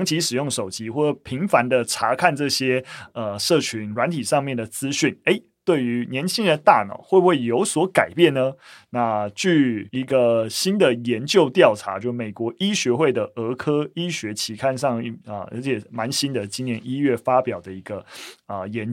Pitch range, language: 115-150 Hz, Chinese